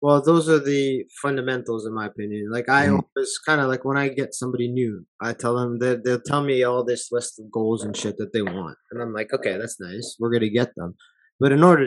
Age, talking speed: 20-39, 255 wpm